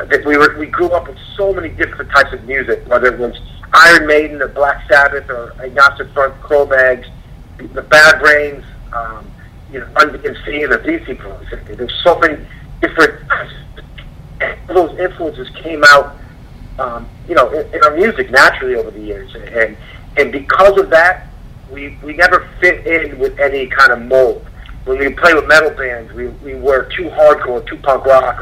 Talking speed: 180 wpm